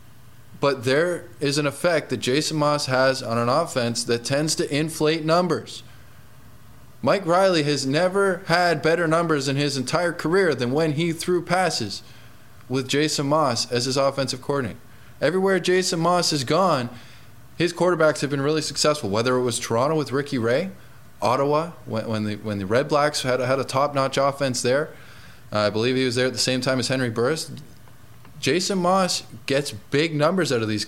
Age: 20-39